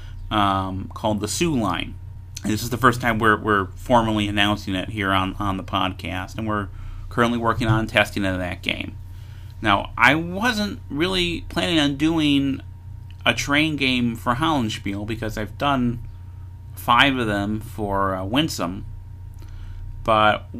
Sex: male